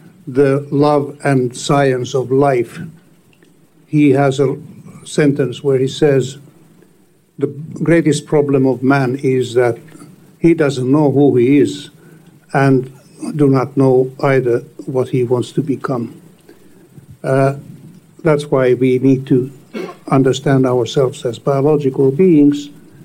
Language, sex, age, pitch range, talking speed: English, male, 60-79, 135-160 Hz, 120 wpm